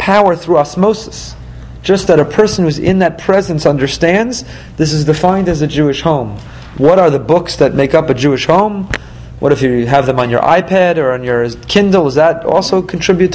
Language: English